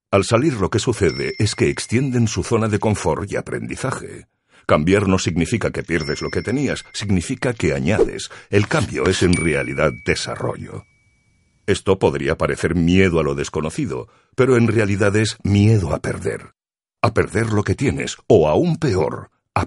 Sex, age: male, 60-79